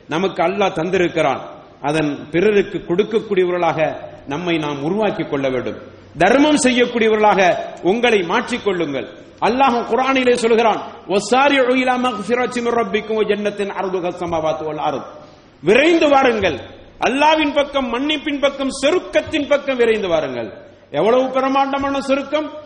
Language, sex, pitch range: English, male, 205-290 Hz